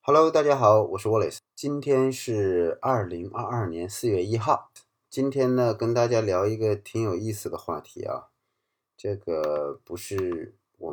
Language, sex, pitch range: Chinese, male, 105-160 Hz